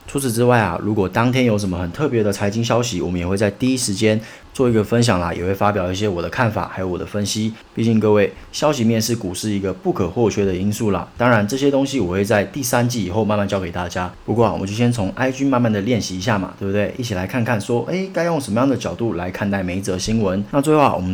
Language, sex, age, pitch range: Chinese, male, 30-49, 95-120 Hz